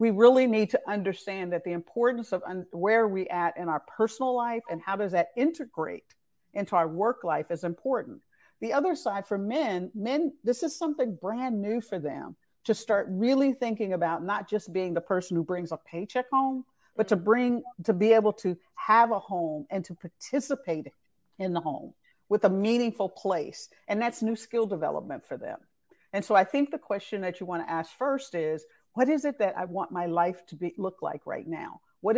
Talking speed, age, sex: 205 wpm, 50-69, female